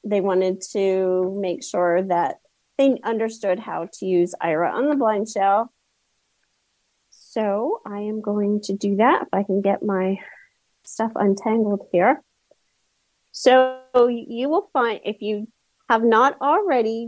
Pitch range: 190-230 Hz